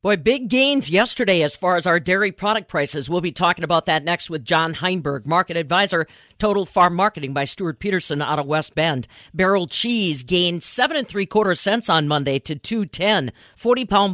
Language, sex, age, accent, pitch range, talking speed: English, female, 50-69, American, 165-225 Hz, 195 wpm